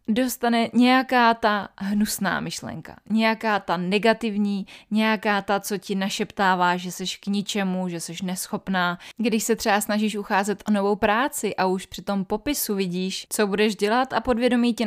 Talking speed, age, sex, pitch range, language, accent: 160 wpm, 20-39, female, 190-225 Hz, Czech, native